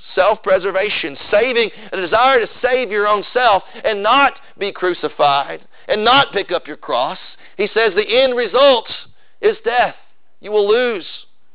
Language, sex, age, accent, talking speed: English, male, 40-59, American, 150 wpm